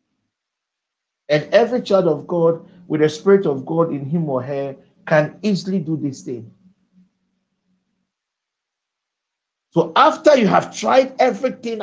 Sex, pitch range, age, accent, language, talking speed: male, 160-210 Hz, 50-69, Nigerian, English, 125 wpm